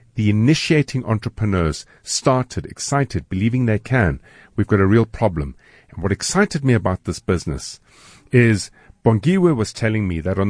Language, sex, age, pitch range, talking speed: English, male, 50-69, 95-140 Hz, 155 wpm